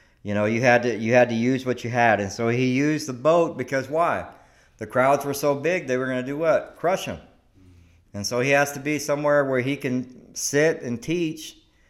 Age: 50-69